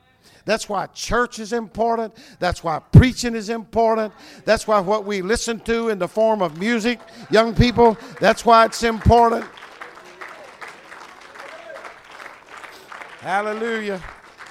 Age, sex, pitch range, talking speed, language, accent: 50-69, male, 170-210 Hz, 115 wpm, English, American